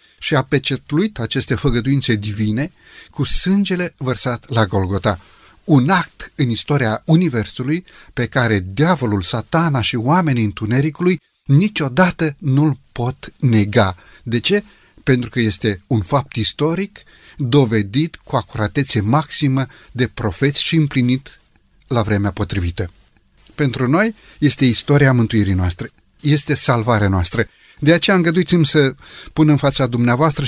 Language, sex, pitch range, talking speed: Romanian, male, 115-155 Hz, 125 wpm